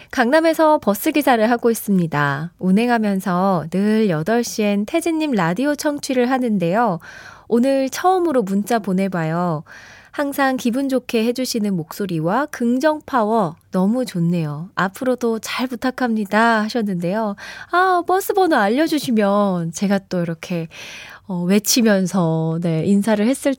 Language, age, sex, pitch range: Korean, 20-39, female, 185-280 Hz